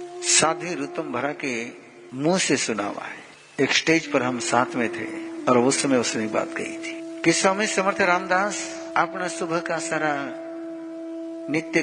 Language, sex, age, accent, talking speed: Hindi, male, 60-79, native, 160 wpm